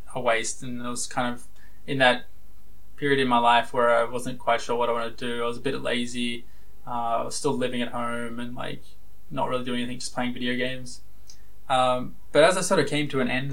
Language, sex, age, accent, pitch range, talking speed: English, male, 20-39, Australian, 115-130 Hz, 245 wpm